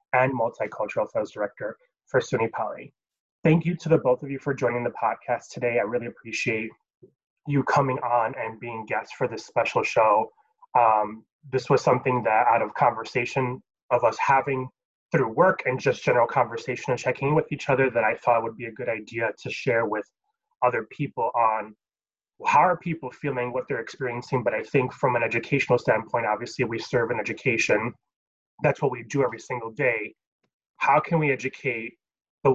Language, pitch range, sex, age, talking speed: English, 120-160 Hz, male, 20-39, 185 wpm